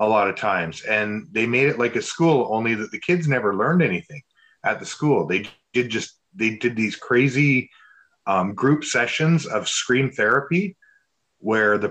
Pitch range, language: 110-140 Hz, English